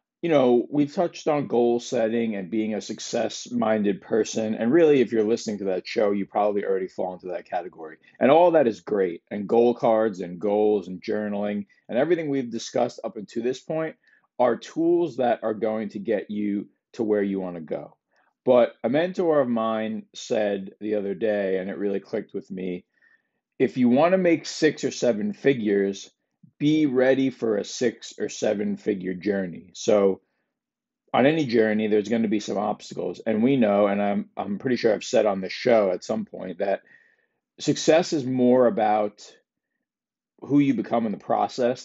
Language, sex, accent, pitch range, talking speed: English, male, American, 100-130 Hz, 190 wpm